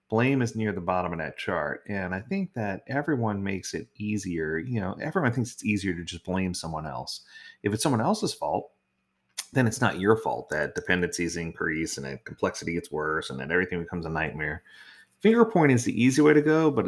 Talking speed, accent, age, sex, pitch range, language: 215 wpm, American, 30-49, male, 90-125 Hz, English